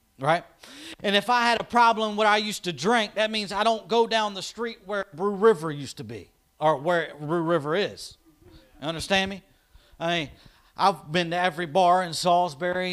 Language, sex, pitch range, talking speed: English, male, 155-215 Hz, 200 wpm